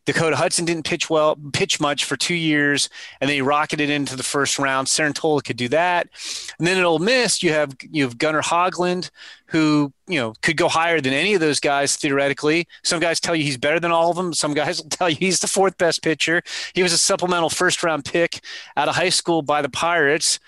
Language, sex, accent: English, male, American